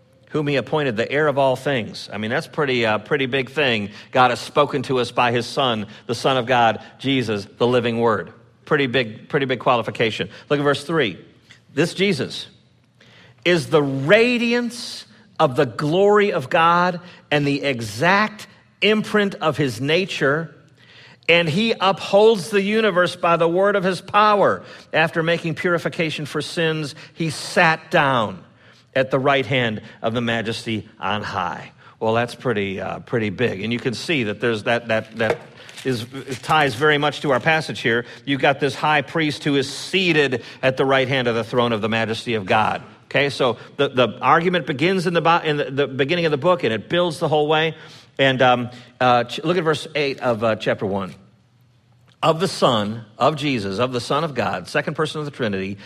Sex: male